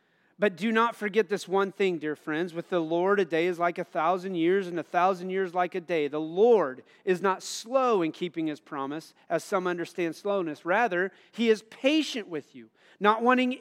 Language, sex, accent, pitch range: English, male, American, 180-225 Hz